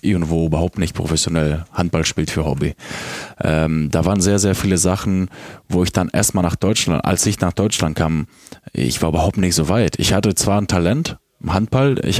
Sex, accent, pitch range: male, German, 80-100 Hz